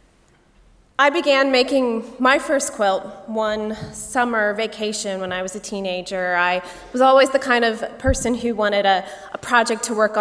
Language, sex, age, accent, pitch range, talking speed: English, female, 20-39, American, 195-255 Hz, 165 wpm